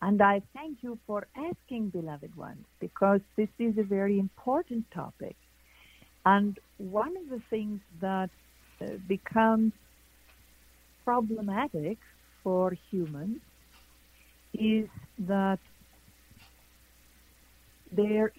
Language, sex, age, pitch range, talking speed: English, female, 50-69, 175-230 Hz, 90 wpm